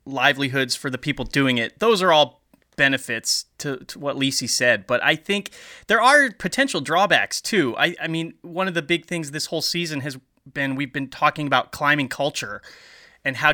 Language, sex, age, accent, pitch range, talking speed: English, male, 30-49, American, 140-170 Hz, 195 wpm